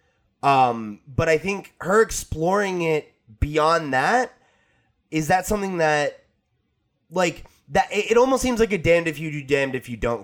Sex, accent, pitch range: male, American, 130-160 Hz